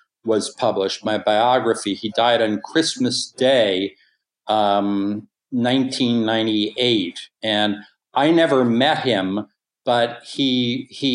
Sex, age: male, 50-69